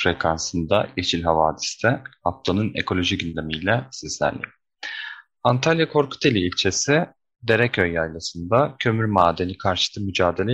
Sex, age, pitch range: male, 30-49, 90-115 Hz